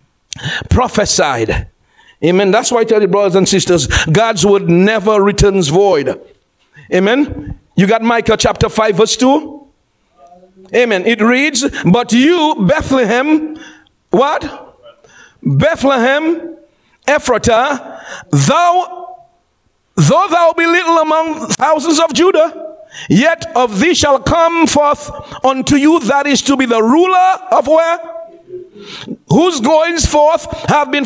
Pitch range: 205-310 Hz